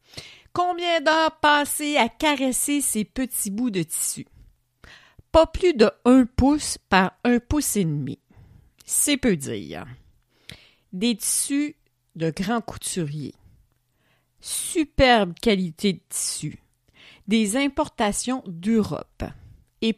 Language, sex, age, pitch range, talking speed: French, female, 50-69, 170-255 Hz, 110 wpm